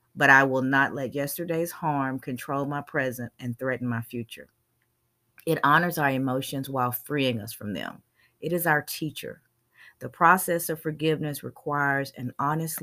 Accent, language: American, English